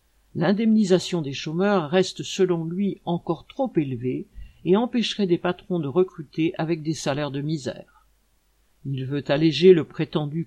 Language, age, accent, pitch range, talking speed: French, 50-69, French, 140-195 Hz, 145 wpm